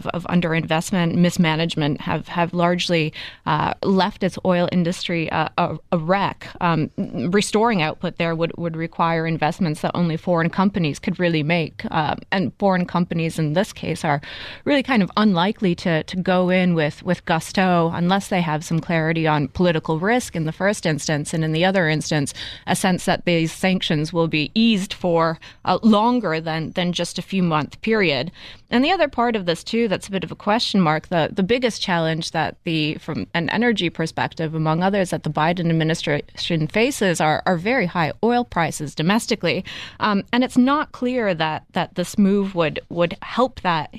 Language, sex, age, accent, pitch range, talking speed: English, female, 20-39, American, 160-195 Hz, 185 wpm